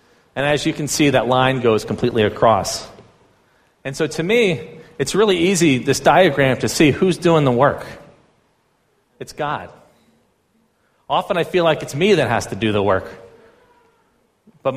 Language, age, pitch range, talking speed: English, 40-59, 110-160 Hz, 165 wpm